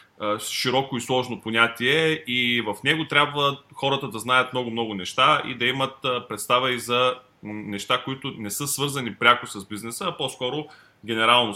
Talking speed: 160 wpm